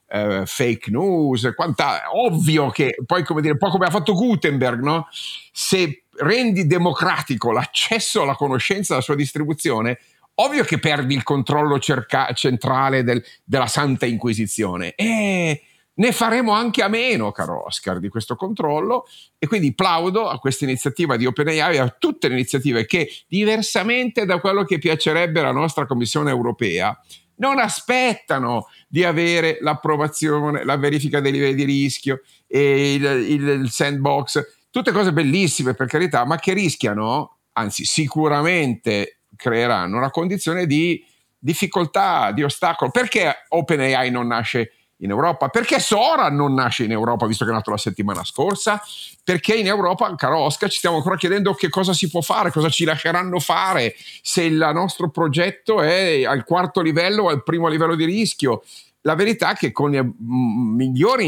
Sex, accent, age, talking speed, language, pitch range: male, native, 50-69, 150 wpm, Italian, 130-185 Hz